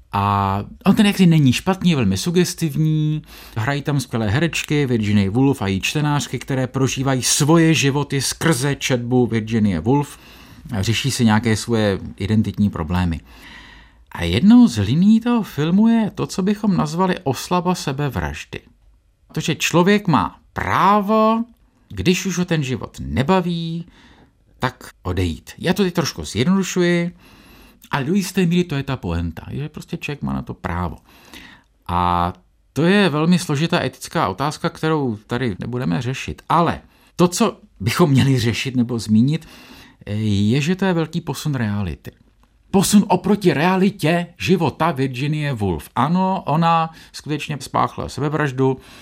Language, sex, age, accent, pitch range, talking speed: Czech, male, 50-69, Slovak, 115-175 Hz, 140 wpm